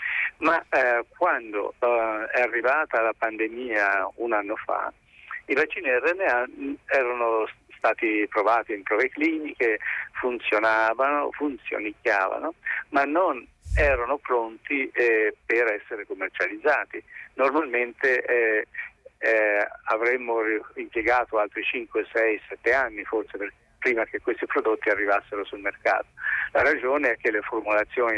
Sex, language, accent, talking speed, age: male, Italian, native, 115 wpm, 50-69